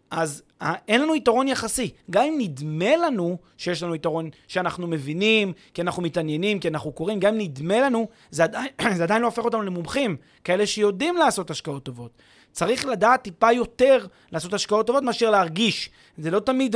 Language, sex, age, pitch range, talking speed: Hebrew, male, 30-49, 165-230 Hz, 175 wpm